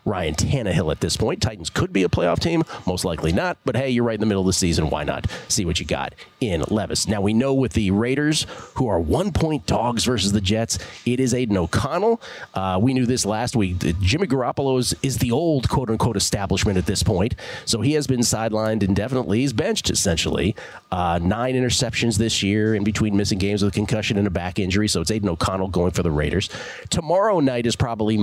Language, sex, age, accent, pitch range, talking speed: English, male, 40-59, American, 100-130 Hz, 215 wpm